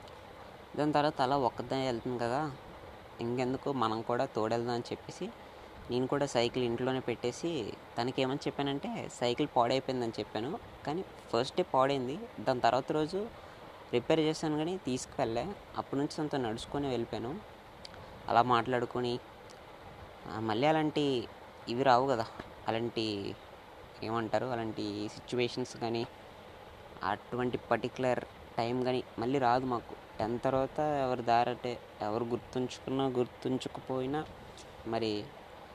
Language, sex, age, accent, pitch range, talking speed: Telugu, female, 20-39, native, 115-135 Hz, 110 wpm